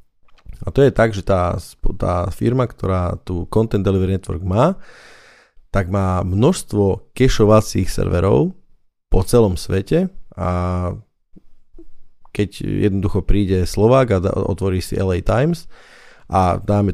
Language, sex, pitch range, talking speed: Slovak, male, 90-105 Hz, 120 wpm